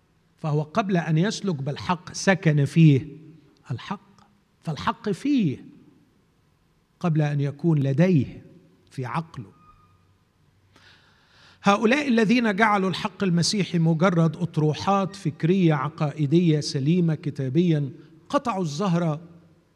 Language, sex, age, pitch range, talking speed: Arabic, male, 50-69, 145-185 Hz, 90 wpm